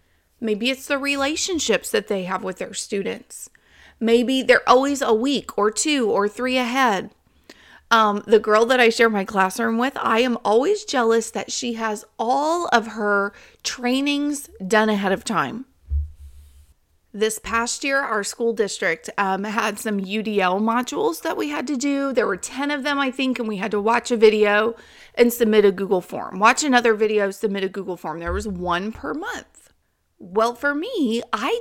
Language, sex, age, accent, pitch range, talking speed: English, female, 30-49, American, 210-275 Hz, 180 wpm